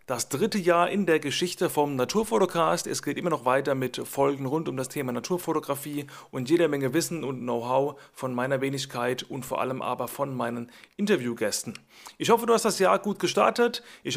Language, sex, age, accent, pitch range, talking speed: German, male, 30-49, German, 135-185 Hz, 190 wpm